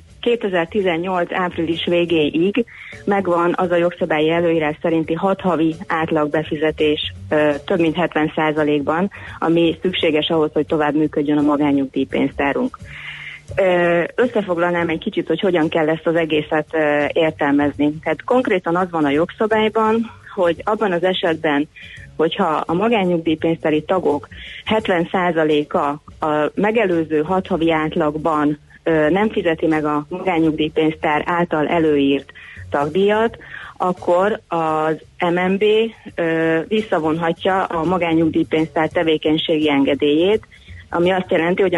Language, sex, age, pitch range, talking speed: Hungarian, female, 30-49, 155-180 Hz, 105 wpm